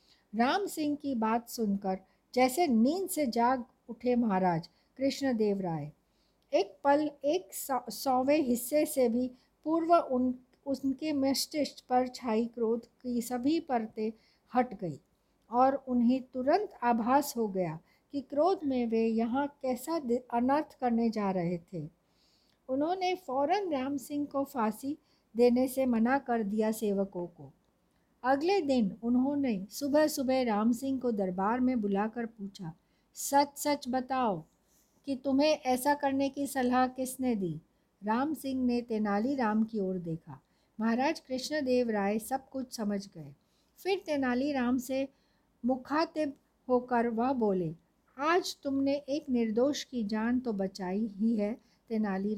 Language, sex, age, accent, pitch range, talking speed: Hindi, female, 60-79, native, 220-275 Hz, 135 wpm